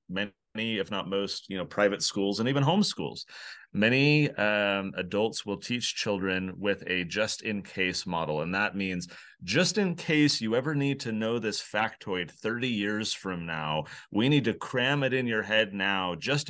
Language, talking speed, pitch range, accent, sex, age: English, 185 wpm, 100-125 Hz, American, male, 30-49